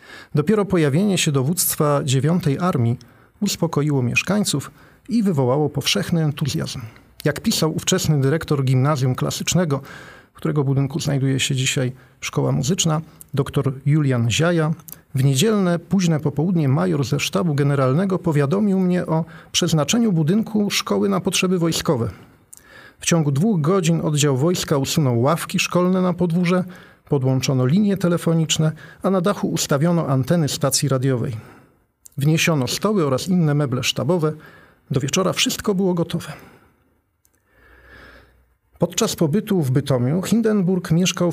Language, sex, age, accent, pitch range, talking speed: Polish, male, 40-59, native, 135-180 Hz, 120 wpm